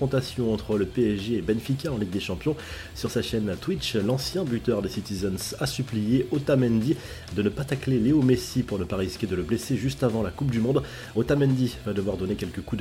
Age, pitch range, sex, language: 30-49, 105-130 Hz, male, French